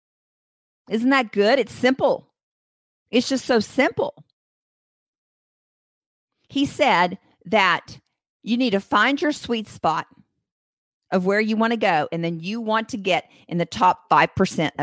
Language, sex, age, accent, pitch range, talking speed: English, female, 50-69, American, 170-240 Hz, 140 wpm